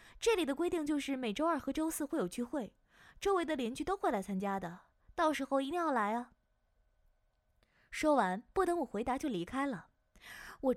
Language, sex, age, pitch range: Chinese, female, 20-39, 215-320 Hz